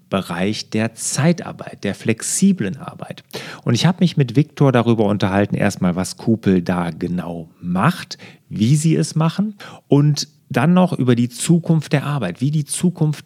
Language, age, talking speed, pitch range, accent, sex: German, 40-59, 160 wpm, 105-160 Hz, German, male